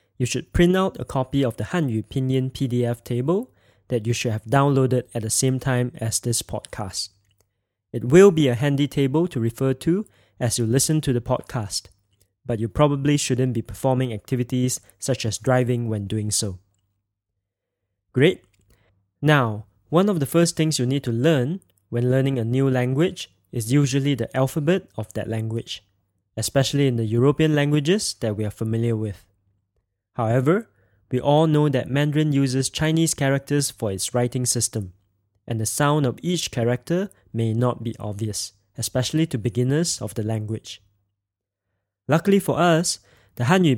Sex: male